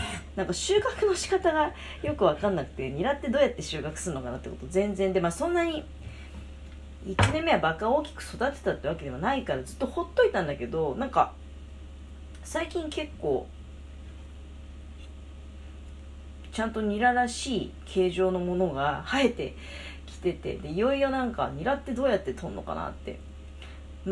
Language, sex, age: Japanese, female, 40-59